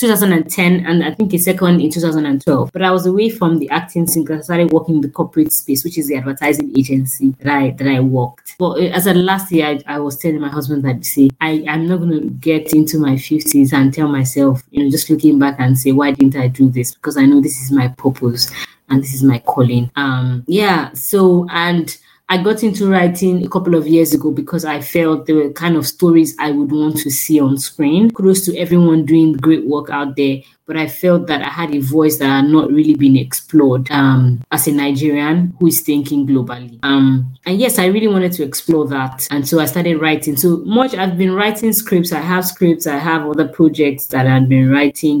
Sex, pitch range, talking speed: female, 140-165 Hz, 225 wpm